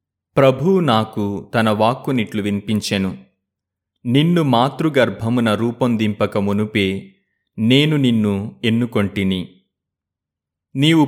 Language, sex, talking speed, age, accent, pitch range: Telugu, male, 70 wpm, 30-49, native, 100-125 Hz